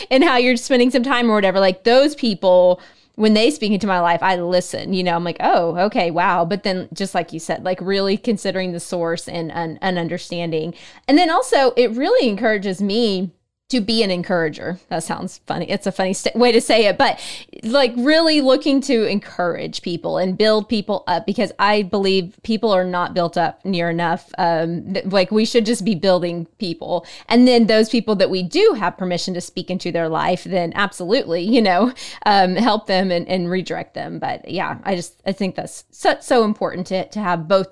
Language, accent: English, American